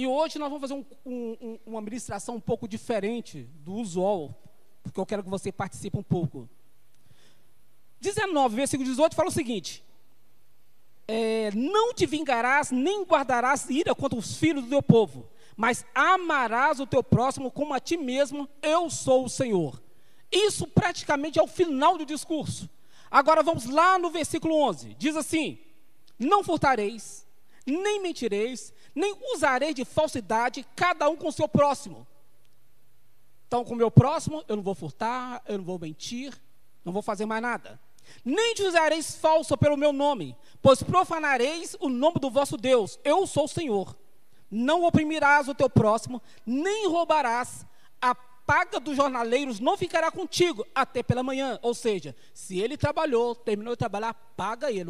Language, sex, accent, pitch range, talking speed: Portuguese, male, Brazilian, 215-315 Hz, 155 wpm